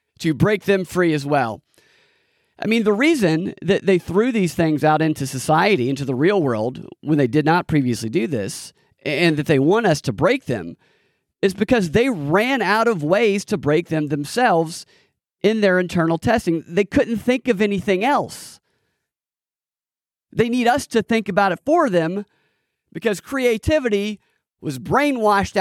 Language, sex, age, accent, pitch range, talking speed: English, male, 40-59, American, 145-200 Hz, 165 wpm